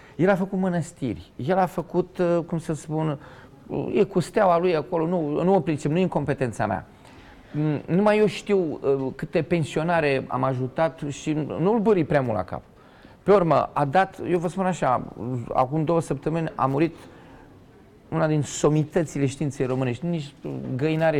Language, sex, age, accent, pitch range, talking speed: Romanian, male, 30-49, native, 125-170 Hz, 165 wpm